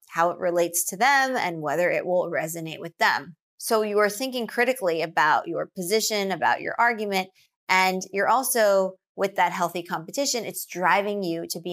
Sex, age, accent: female, 20-39, American